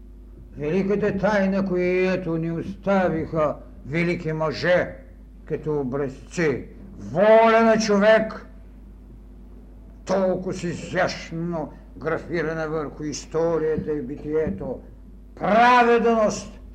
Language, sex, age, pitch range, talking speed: Bulgarian, male, 60-79, 155-220 Hz, 70 wpm